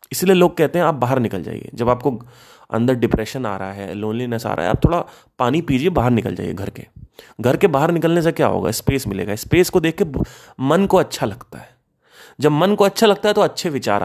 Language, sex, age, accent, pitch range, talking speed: Hindi, male, 30-49, native, 115-180 Hz, 235 wpm